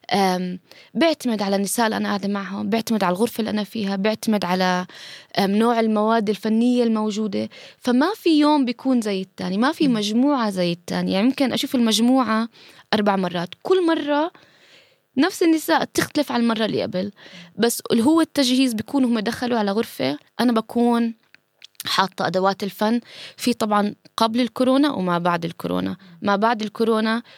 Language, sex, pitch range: Arabic, female, 195-240 Hz